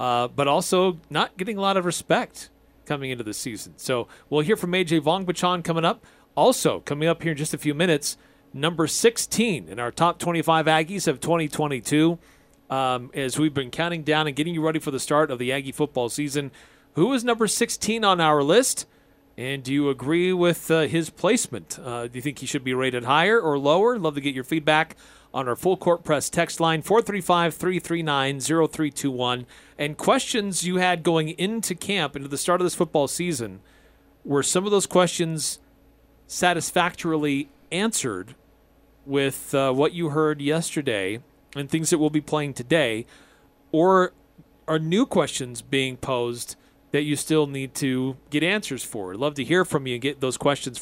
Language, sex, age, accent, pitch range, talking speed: English, male, 40-59, American, 140-175 Hz, 180 wpm